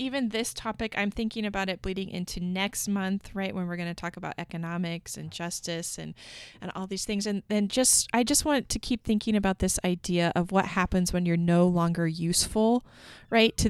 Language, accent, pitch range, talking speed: English, American, 175-215 Hz, 210 wpm